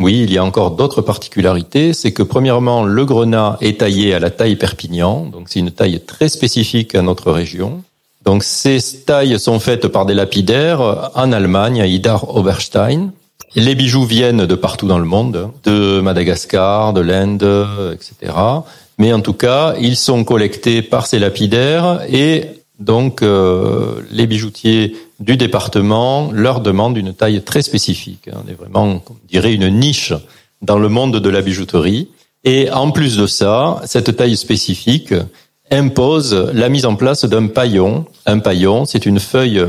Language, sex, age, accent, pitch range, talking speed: French, male, 40-59, French, 95-125 Hz, 165 wpm